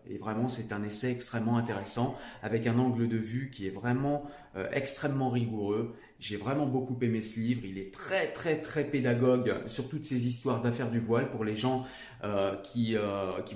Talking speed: 190 wpm